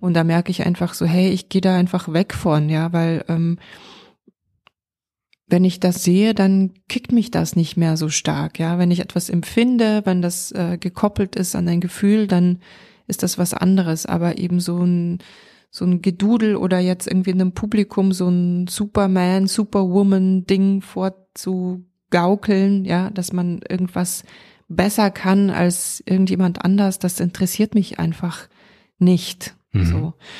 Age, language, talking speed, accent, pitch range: 20-39, German, 160 wpm, German, 175-195 Hz